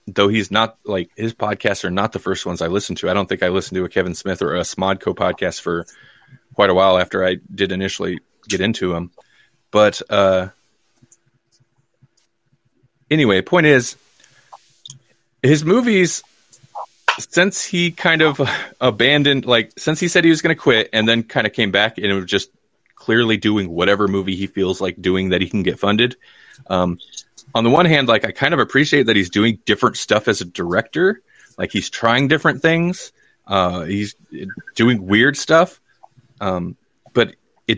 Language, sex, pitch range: English, male, 100-135 Hz